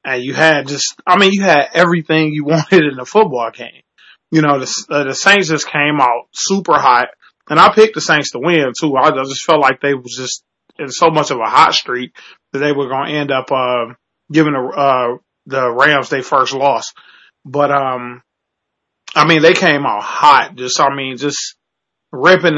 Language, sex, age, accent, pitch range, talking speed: English, male, 20-39, American, 135-170 Hz, 205 wpm